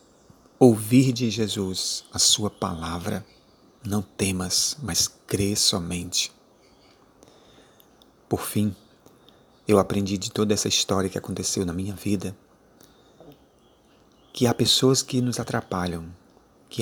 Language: Portuguese